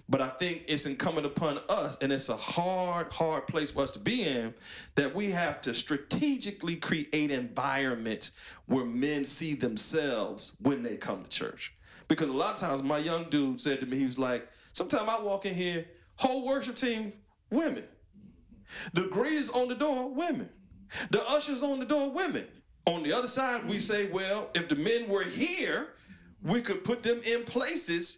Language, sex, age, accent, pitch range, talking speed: English, male, 40-59, American, 145-235 Hz, 185 wpm